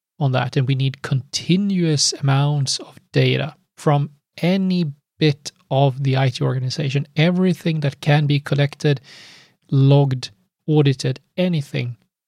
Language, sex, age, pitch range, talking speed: English, male, 30-49, 135-165 Hz, 115 wpm